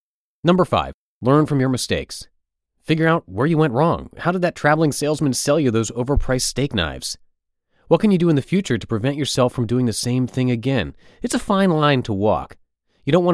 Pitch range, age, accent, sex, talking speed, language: 95-145 Hz, 30-49, American, male, 215 wpm, English